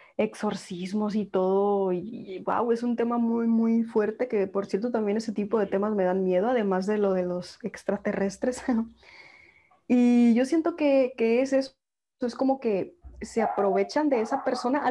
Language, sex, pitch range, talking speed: Spanish, female, 195-245 Hz, 180 wpm